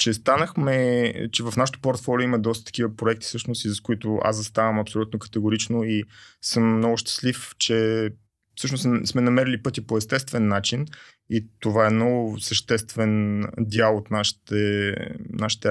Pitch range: 110-125 Hz